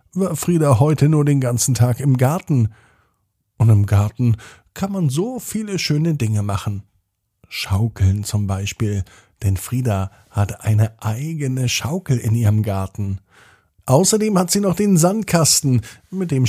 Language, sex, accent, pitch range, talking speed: German, male, German, 105-135 Hz, 140 wpm